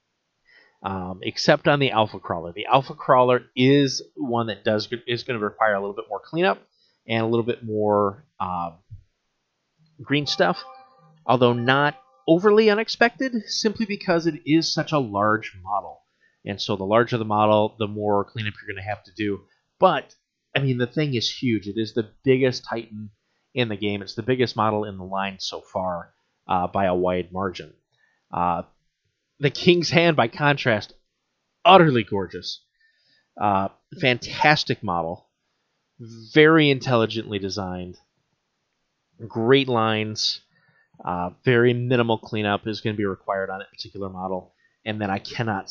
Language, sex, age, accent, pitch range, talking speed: English, male, 30-49, American, 100-130 Hz, 155 wpm